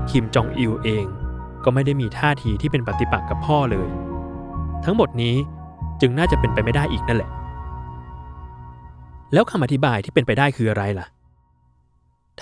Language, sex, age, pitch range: Thai, male, 20-39, 90-130 Hz